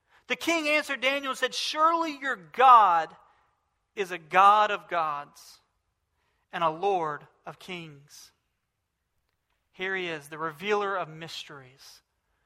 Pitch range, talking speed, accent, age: 225-290 Hz, 125 wpm, American, 40-59